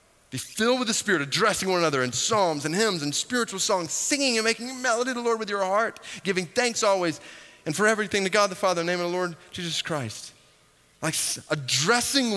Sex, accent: male, American